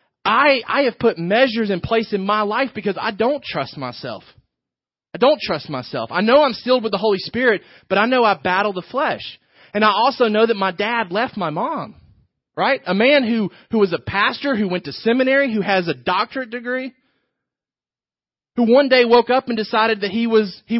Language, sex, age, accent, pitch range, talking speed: English, male, 30-49, American, 175-230 Hz, 210 wpm